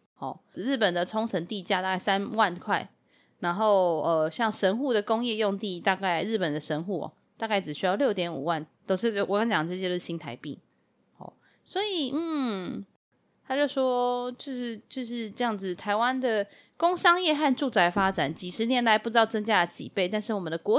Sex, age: female, 20-39